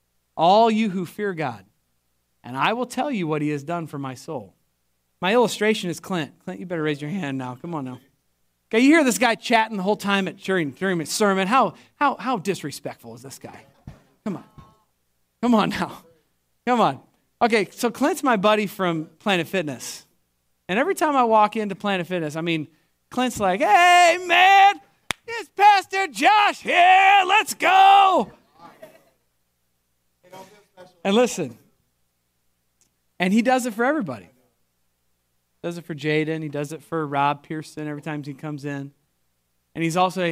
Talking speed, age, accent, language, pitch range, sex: 170 wpm, 40-59, American, English, 135-225 Hz, male